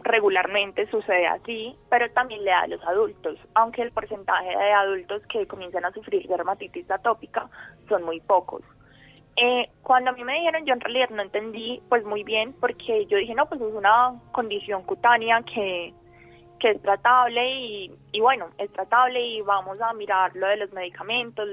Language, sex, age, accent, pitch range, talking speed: Spanish, female, 20-39, Colombian, 200-235 Hz, 180 wpm